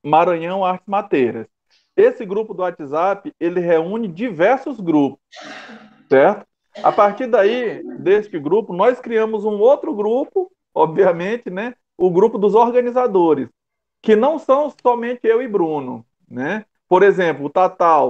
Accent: Brazilian